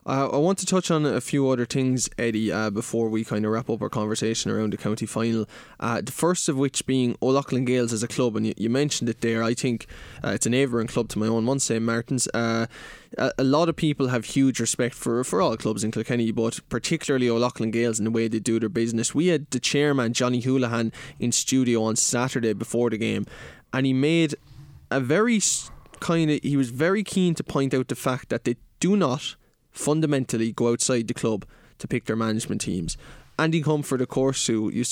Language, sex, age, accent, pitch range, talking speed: English, male, 20-39, Irish, 115-135 Hz, 220 wpm